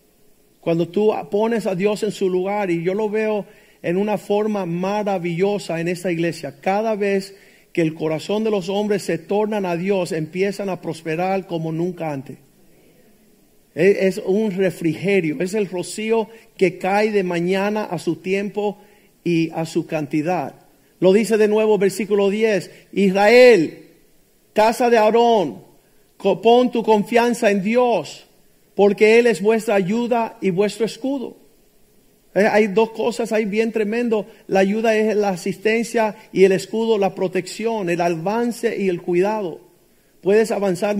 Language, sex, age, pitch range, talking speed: Spanish, male, 50-69, 185-215 Hz, 145 wpm